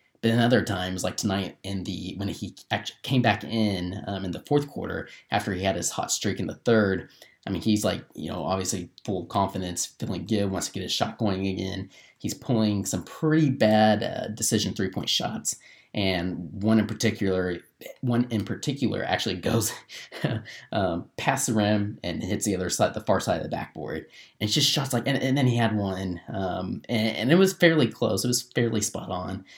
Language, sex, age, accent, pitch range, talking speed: English, male, 20-39, American, 95-115 Hz, 205 wpm